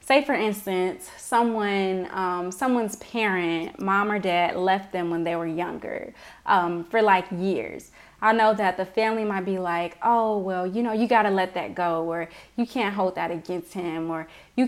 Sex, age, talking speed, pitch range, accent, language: female, 20-39, 190 wpm, 180-220 Hz, American, English